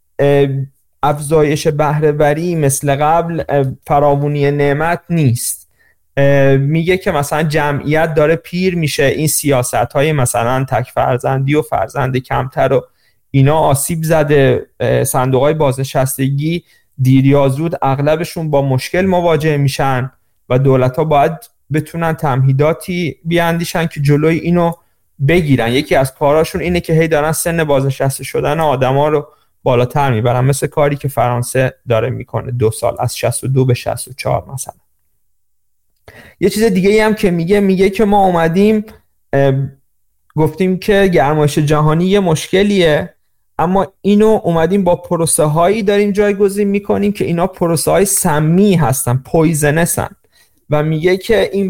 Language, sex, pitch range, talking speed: Persian, male, 135-175 Hz, 130 wpm